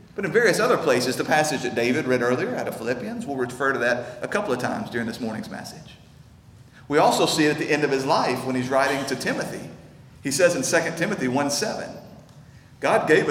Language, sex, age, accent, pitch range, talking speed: English, male, 40-59, American, 130-160 Hz, 220 wpm